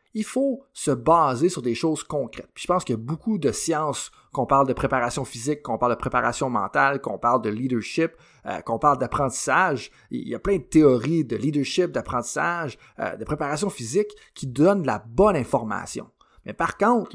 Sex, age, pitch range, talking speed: male, 30-49, 125-170 Hz, 195 wpm